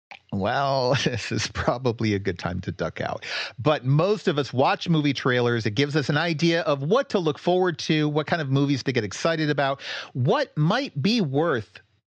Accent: American